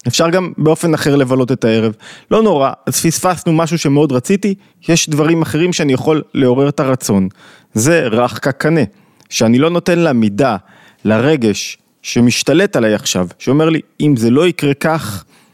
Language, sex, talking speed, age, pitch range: Hebrew, male, 155 wpm, 30-49, 120-155 Hz